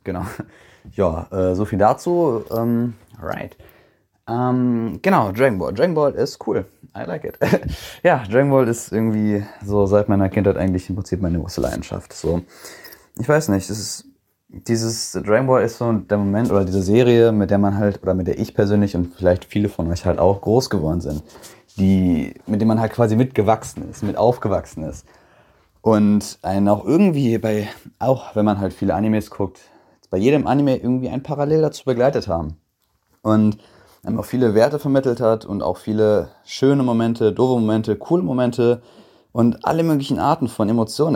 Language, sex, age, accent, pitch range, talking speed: German, male, 20-39, German, 95-120 Hz, 175 wpm